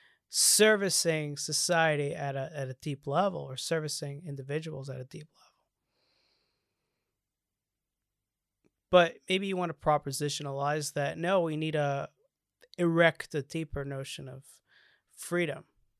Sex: male